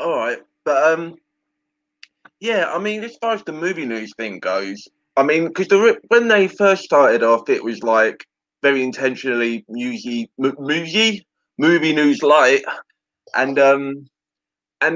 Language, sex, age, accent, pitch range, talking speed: English, male, 20-39, British, 110-150 Hz, 150 wpm